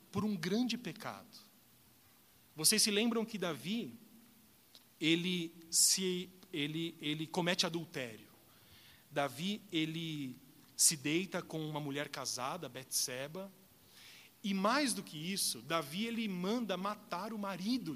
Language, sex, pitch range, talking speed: Portuguese, male, 155-220 Hz, 115 wpm